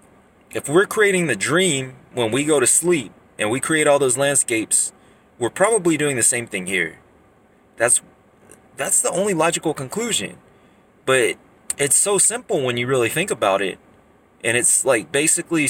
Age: 30-49